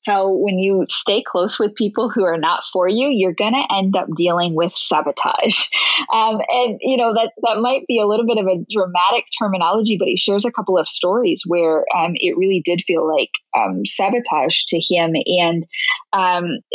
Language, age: English, 20-39